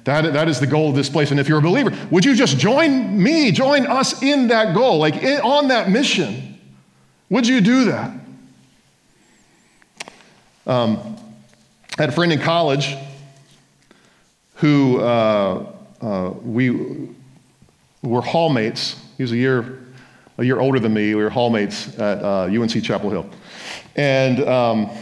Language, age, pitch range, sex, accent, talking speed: English, 40-59, 120-155 Hz, male, American, 145 wpm